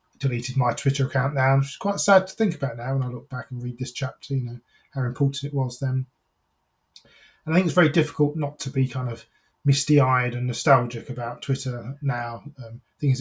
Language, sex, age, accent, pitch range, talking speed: English, male, 20-39, British, 125-145 Hz, 220 wpm